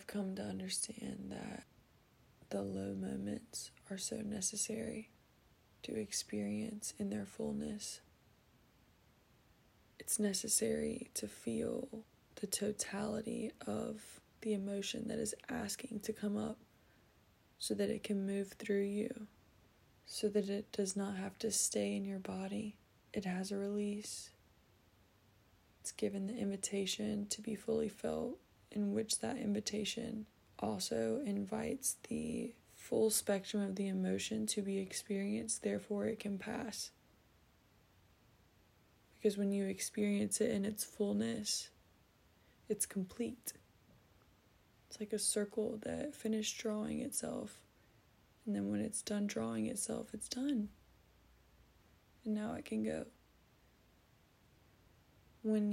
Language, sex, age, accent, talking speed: English, female, 20-39, American, 120 wpm